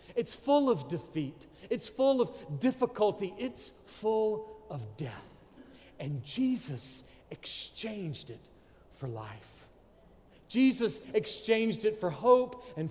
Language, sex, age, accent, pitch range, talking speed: English, male, 40-59, American, 115-195 Hz, 110 wpm